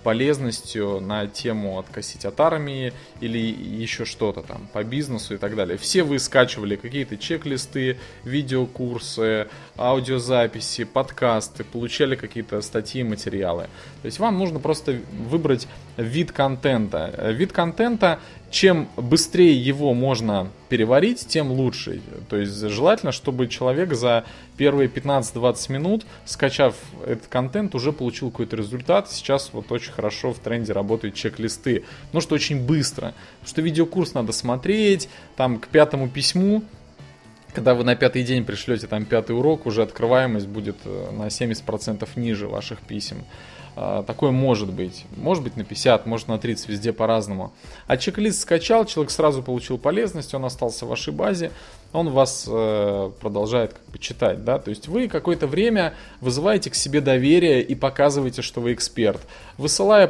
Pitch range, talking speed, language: 110-150 Hz, 145 wpm, Russian